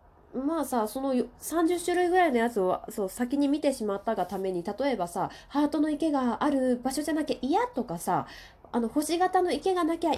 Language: Japanese